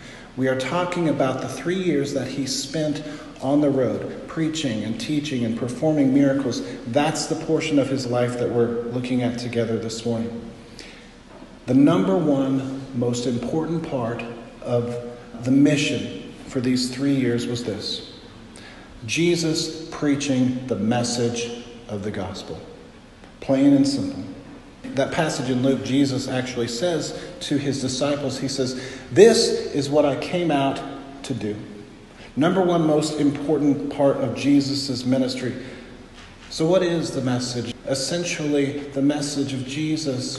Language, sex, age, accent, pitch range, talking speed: English, male, 50-69, American, 120-145 Hz, 140 wpm